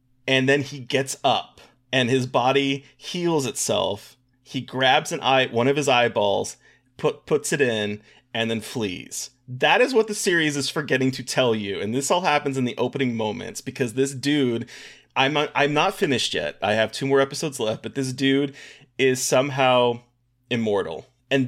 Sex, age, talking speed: male, 30-49, 180 wpm